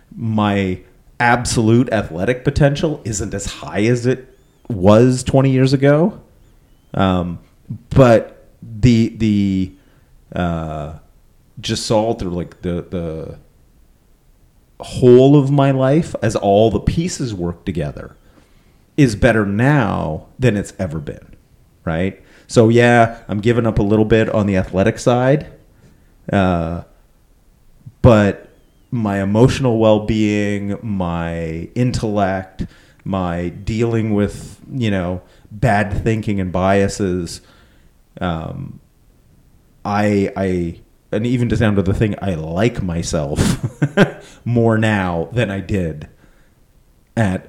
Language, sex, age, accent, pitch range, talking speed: English, male, 30-49, American, 95-120 Hz, 110 wpm